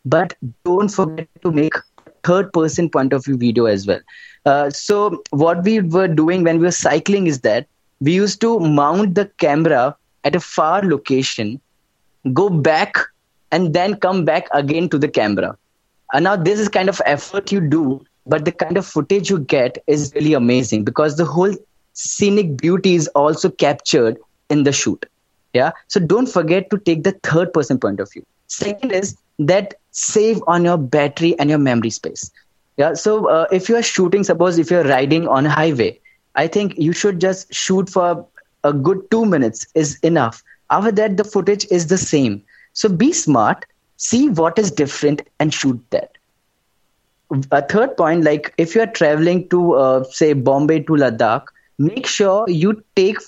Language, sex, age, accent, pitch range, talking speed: English, male, 20-39, Indian, 145-195 Hz, 170 wpm